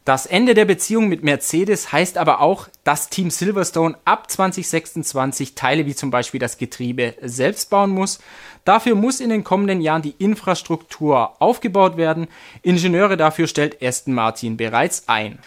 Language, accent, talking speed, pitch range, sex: German, German, 155 wpm, 140-205 Hz, male